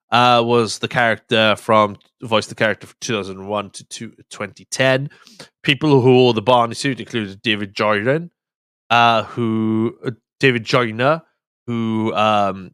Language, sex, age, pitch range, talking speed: English, male, 20-39, 105-120 Hz, 130 wpm